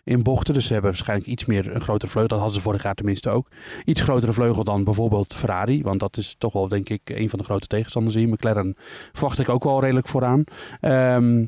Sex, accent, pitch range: male, Dutch, 105-130 Hz